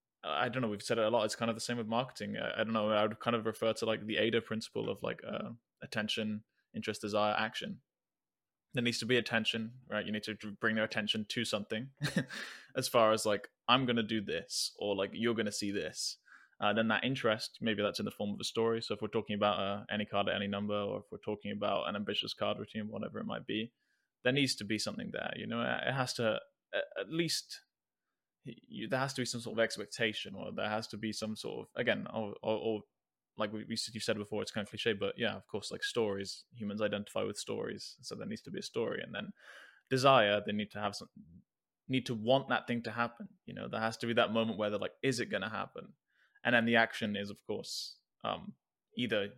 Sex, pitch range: male, 105-120 Hz